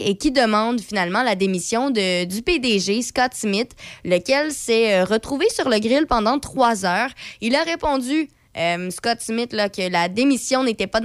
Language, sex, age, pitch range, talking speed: French, female, 20-39, 195-245 Hz, 175 wpm